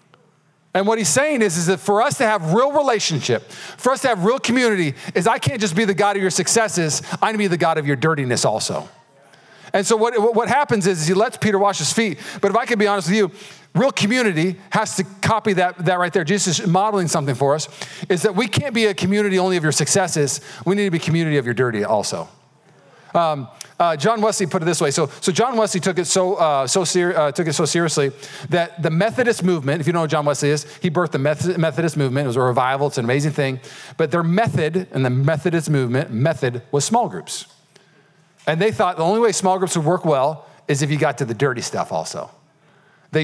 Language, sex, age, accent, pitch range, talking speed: English, male, 40-59, American, 150-200 Hz, 240 wpm